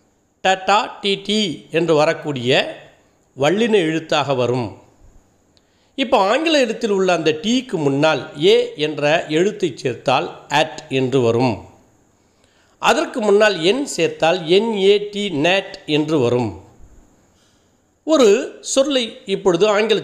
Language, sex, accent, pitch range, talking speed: Tamil, male, native, 135-210 Hz, 100 wpm